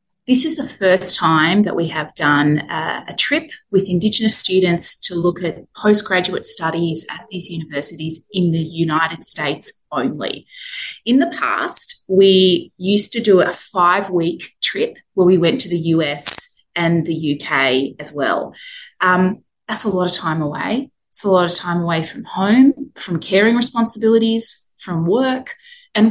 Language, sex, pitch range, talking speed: English, female, 165-235 Hz, 160 wpm